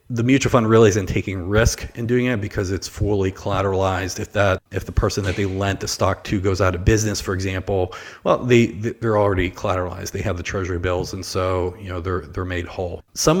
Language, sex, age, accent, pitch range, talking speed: English, male, 40-59, American, 90-105 Hz, 225 wpm